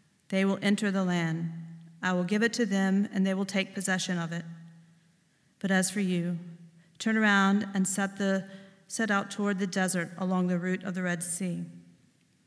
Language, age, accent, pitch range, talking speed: English, 40-59, American, 170-195 Hz, 185 wpm